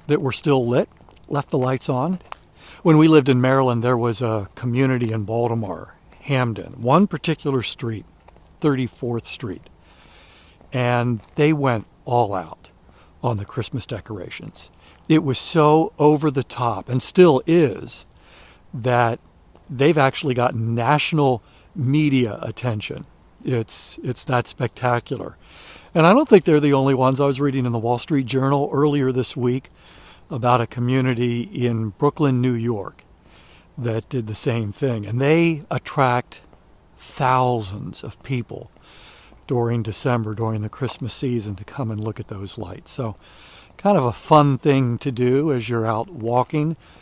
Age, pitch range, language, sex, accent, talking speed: 60-79, 115-140 Hz, English, male, American, 150 wpm